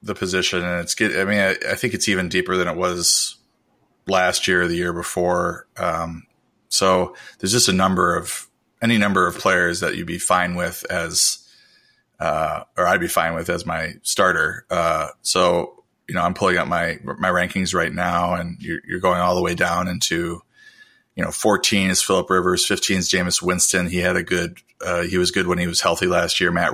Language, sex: English, male